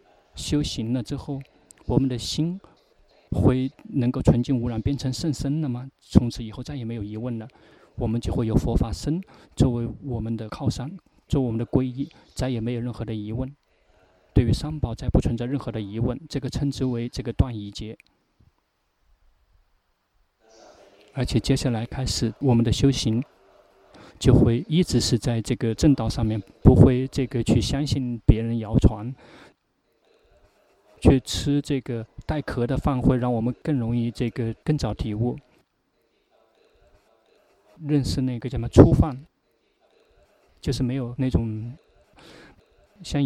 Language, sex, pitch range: Chinese, male, 115-135 Hz